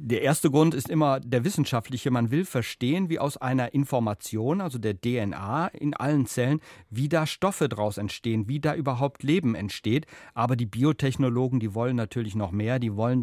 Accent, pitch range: German, 115-145 Hz